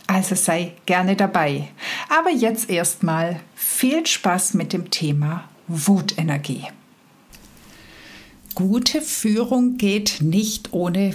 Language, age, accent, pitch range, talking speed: German, 60-79, German, 160-215 Hz, 95 wpm